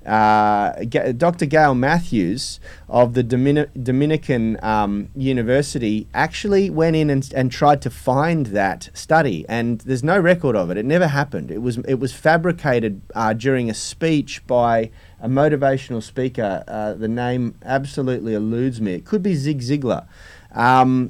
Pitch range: 115-150 Hz